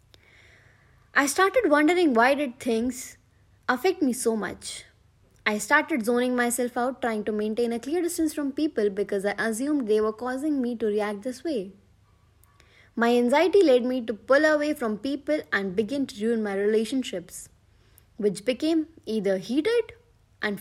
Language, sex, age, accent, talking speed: English, female, 20-39, Indian, 155 wpm